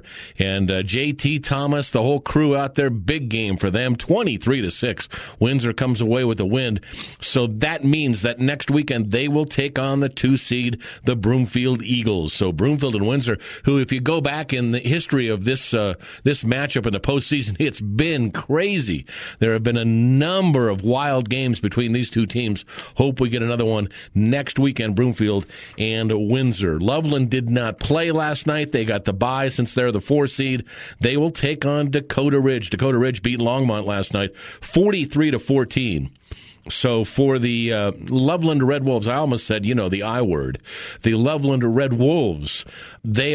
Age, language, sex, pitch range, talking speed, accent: 50-69, English, male, 115-145 Hz, 180 wpm, American